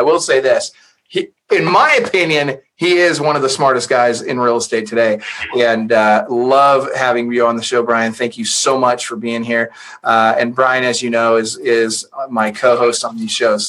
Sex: male